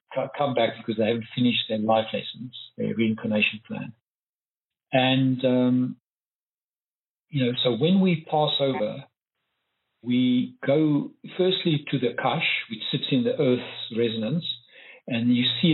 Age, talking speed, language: 50-69, 135 wpm, English